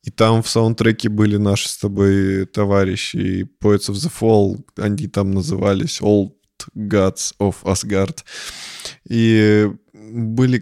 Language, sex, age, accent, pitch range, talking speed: Russian, male, 20-39, native, 100-125 Hz, 130 wpm